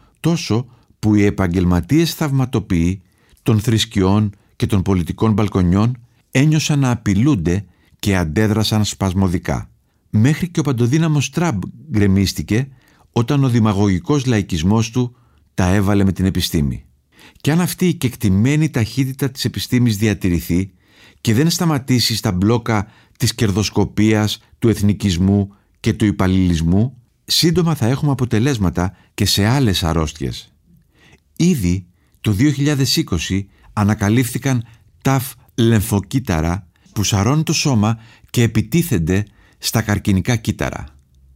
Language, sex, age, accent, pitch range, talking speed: Greek, male, 50-69, native, 95-130 Hz, 110 wpm